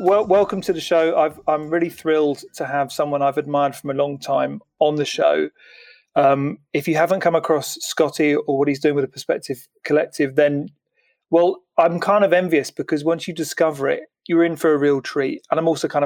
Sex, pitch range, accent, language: male, 140-165 Hz, British, English